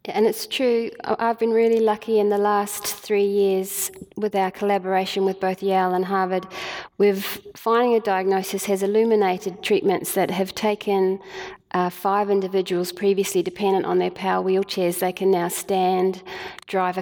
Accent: Australian